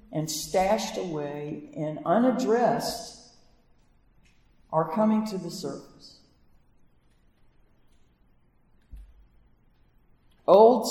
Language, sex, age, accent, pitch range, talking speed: English, female, 60-79, American, 160-210 Hz, 60 wpm